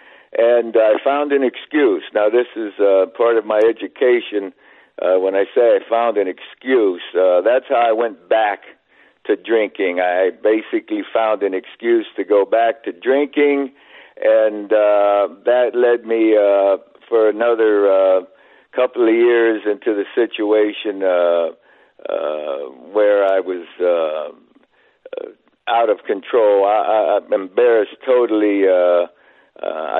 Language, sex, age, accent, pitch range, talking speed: English, male, 60-79, American, 100-150 Hz, 140 wpm